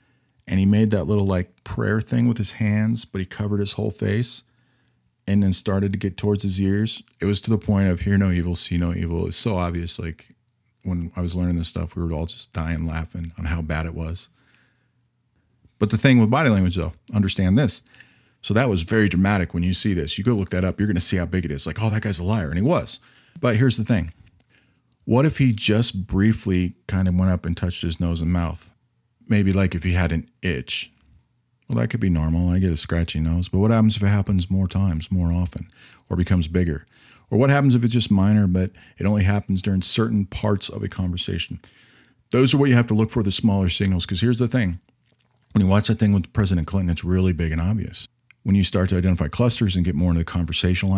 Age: 40-59